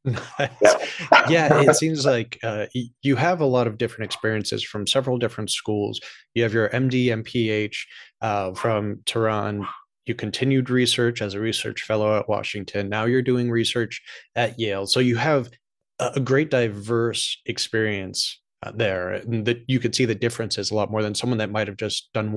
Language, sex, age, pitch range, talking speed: English, male, 30-49, 105-125 Hz, 170 wpm